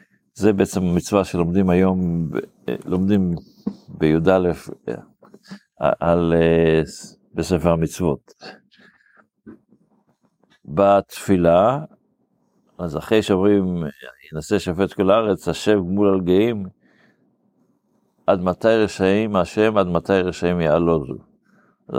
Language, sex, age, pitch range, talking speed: Hebrew, male, 50-69, 85-105 Hz, 80 wpm